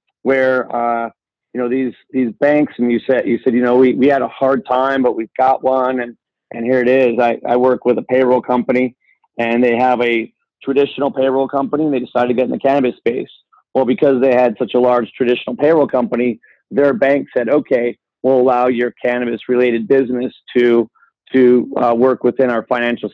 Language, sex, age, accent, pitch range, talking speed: English, male, 40-59, American, 120-135 Hz, 205 wpm